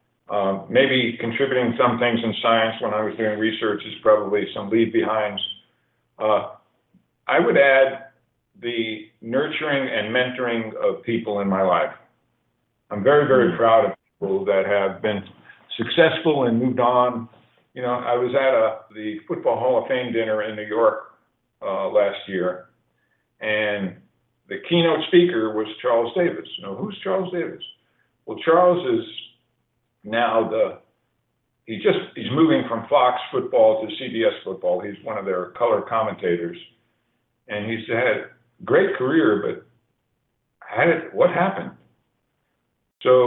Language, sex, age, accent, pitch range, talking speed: English, male, 50-69, American, 105-135 Hz, 145 wpm